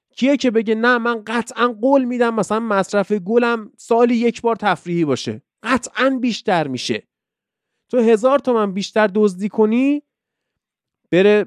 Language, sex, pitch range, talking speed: Persian, male, 195-240 Hz, 130 wpm